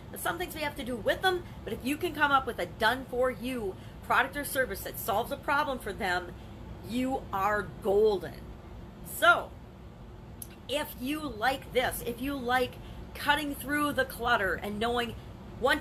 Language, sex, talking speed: English, female, 175 wpm